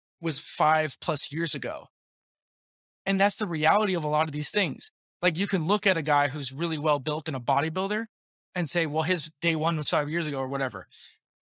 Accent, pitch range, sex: American, 150-195 Hz, male